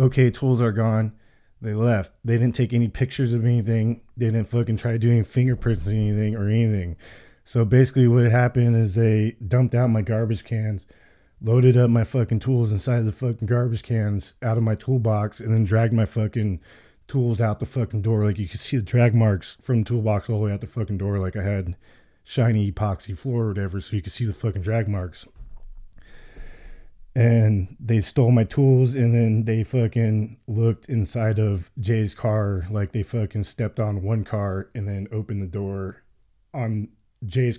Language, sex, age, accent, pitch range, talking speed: English, male, 20-39, American, 105-120 Hz, 190 wpm